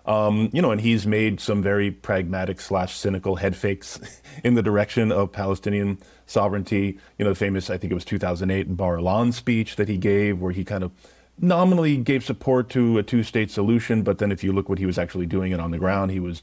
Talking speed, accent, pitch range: 225 wpm, American, 95-115 Hz